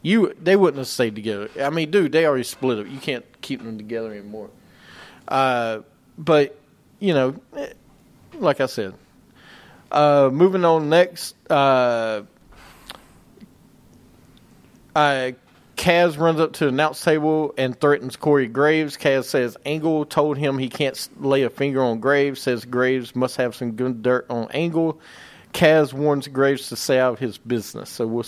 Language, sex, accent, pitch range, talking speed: English, male, American, 125-155 Hz, 160 wpm